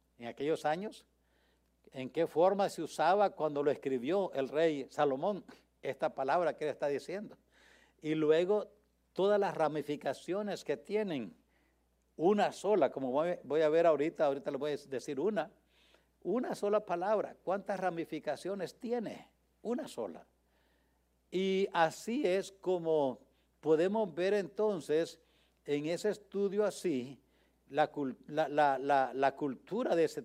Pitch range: 135-190 Hz